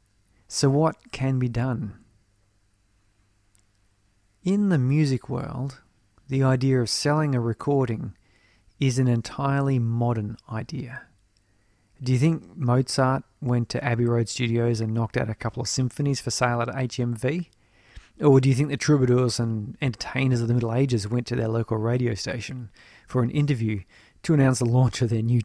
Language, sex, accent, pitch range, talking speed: English, male, Australian, 110-135 Hz, 160 wpm